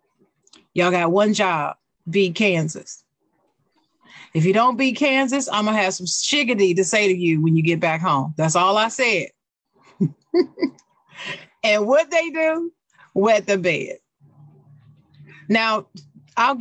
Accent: American